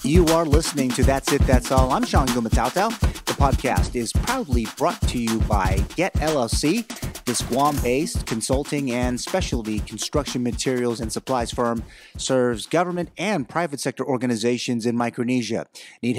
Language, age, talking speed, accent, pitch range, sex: English, 30-49, 150 wpm, American, 120-150 Hz, male